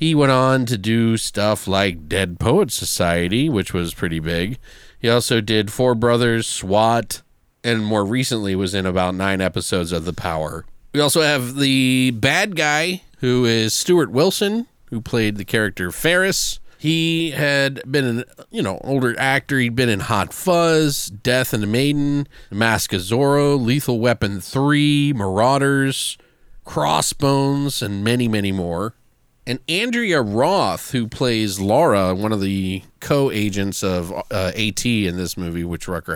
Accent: American